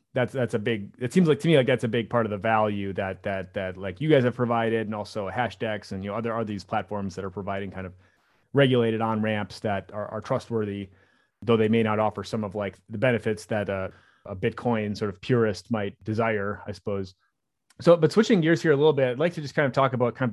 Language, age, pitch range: English, 30-49, 105-120 Hz